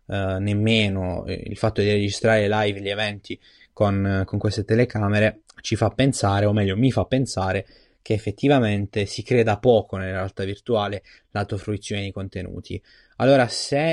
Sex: male